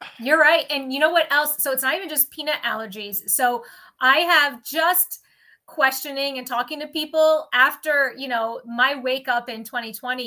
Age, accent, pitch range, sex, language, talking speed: 20-39, American, 245-300 Hz, female, English, 180 wpm